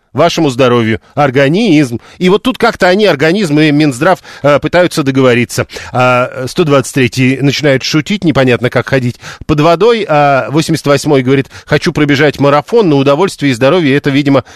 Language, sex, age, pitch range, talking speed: Russian, male, 40-59, 130-165 Hz, 130 wpm